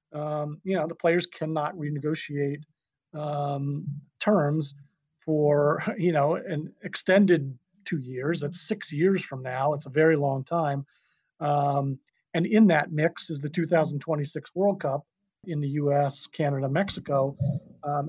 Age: 40-59